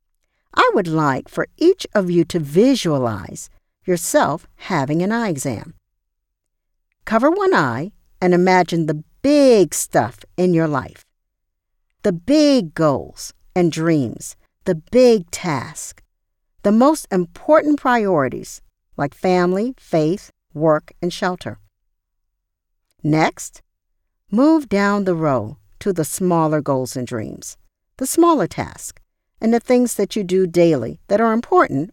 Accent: American